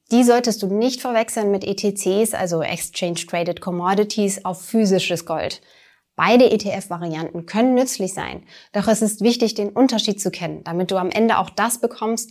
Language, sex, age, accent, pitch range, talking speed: German, female, 30-49, German, 180-230 Hz, 165 wpm